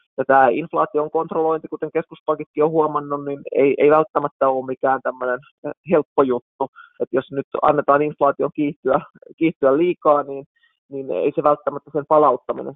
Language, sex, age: Finnish, male, 20-39